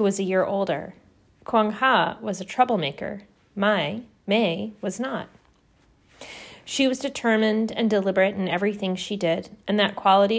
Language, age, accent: English, 30-49, American